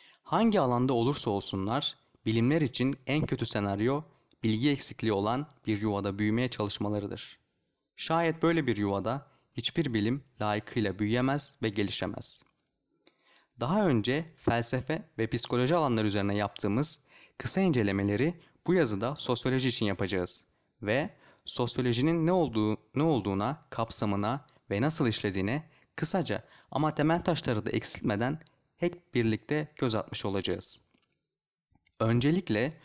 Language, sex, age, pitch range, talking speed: Turkish, male, 30-49, 110-145 Hz, 115 wpm